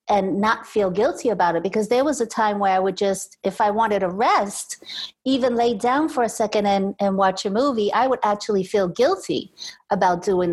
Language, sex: English, female